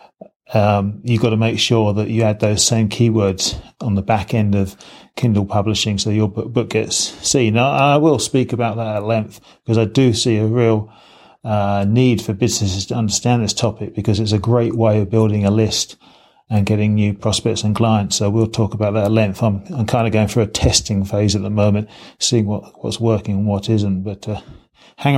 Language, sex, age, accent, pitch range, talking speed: English, male, 30-49, British, 110-130 Hz, 215 wpm